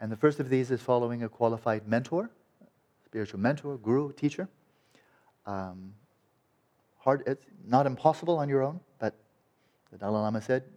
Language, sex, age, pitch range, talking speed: English, male, 40-59, 105-125 Hz, 150 wpm